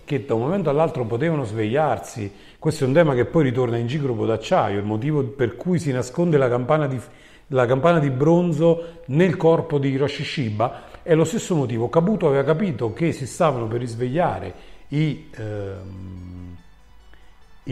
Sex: male